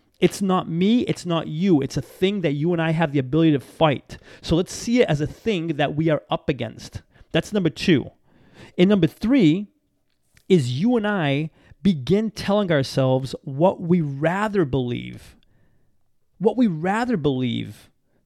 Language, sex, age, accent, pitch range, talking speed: English, male, 30-49, American, 150-200 Hz, 170 wpm